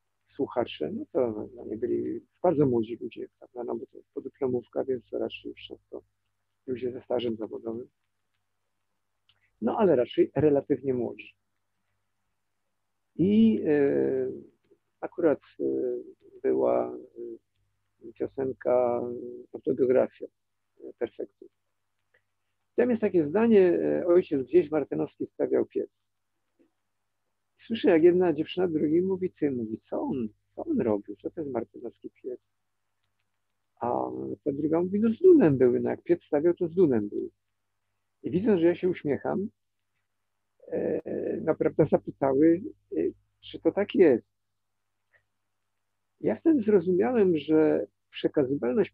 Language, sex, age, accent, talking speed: Polish, male, 50-69, native, 120 wpm